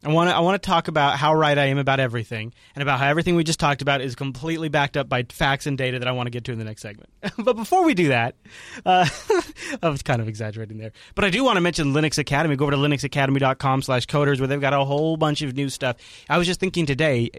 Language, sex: English, male